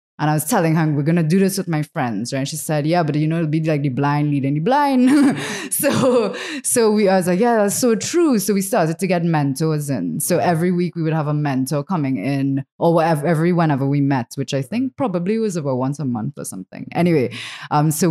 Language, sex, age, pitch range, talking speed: English, female, 20-39, 140-170 Hz, 250 wpm